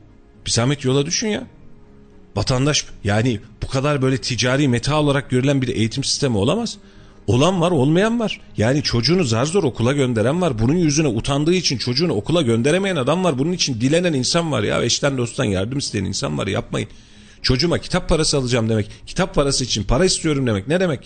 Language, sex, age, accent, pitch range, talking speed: Turkish, male, 40-59, native, 115-180 Hz, 180 wpm